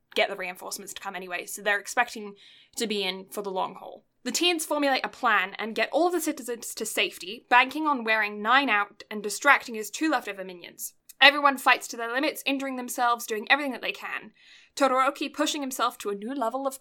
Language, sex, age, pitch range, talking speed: English, female, 10-29, 205-255 Hz, 210 wpm